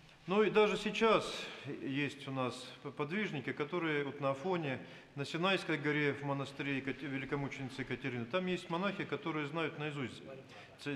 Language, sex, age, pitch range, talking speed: Russian, male, 40-59, 125-155 Hz, 135 wpm